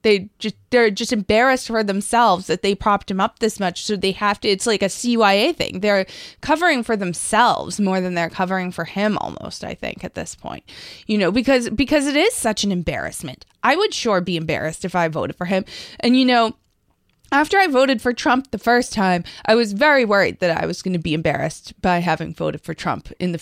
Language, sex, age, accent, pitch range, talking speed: English, female, 20-39, American, 185-245 Hz, 225 wpm